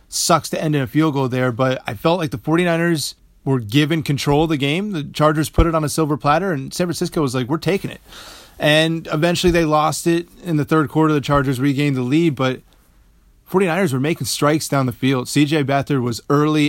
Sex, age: male, 30-49